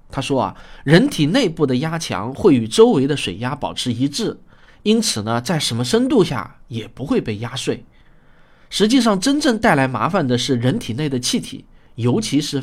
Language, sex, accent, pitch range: Chinese, male, native, 120-185 Hz